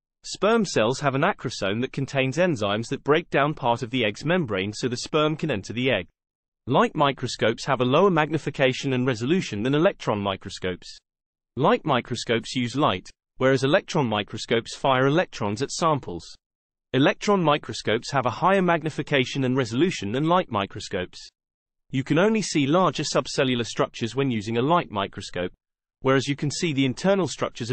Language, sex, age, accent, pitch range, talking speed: English, male, 30-49, British, 115-160 Hz, 160 wpm